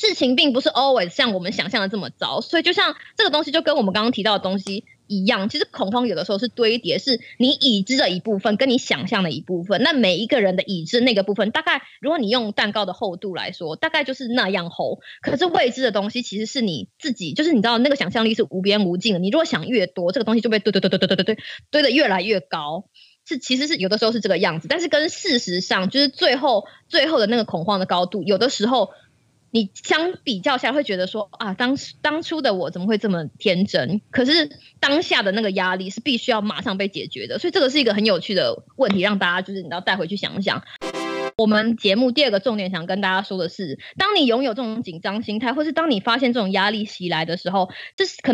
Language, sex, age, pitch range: Chinese, female, 20-39, 195-265 Hz